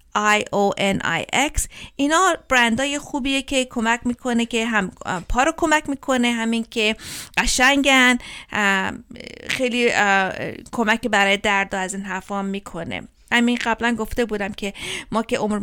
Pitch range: 205-255 Hz